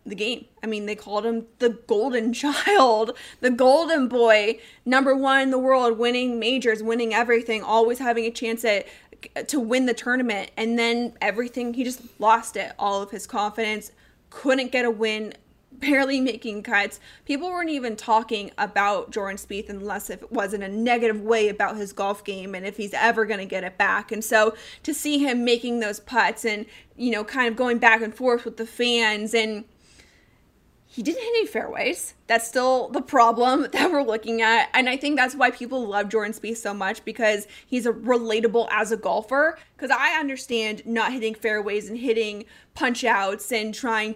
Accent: American